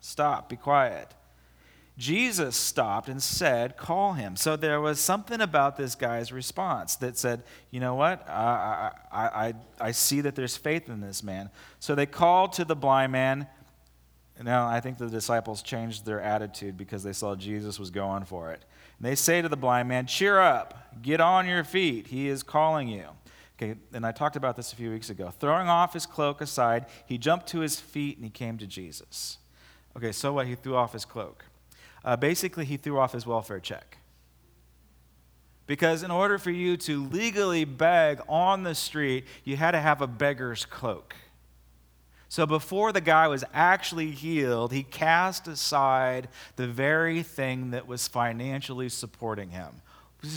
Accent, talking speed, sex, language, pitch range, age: American, 180 wpm, male, English, 110-155 Hz, 30-49